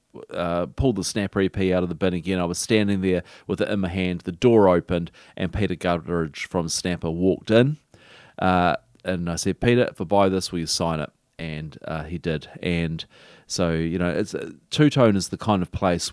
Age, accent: 30-49, Australian